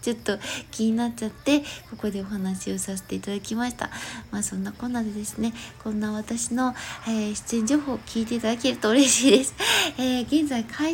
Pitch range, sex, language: 225-290 Hz, female, Japanese